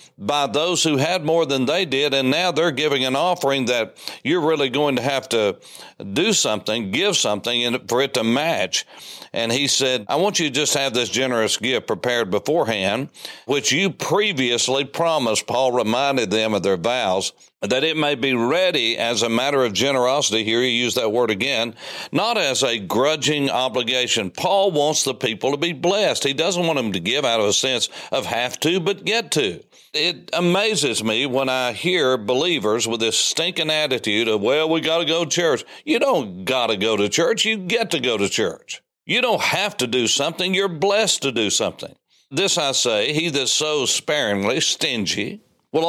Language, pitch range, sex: English, 125-170 Hz, male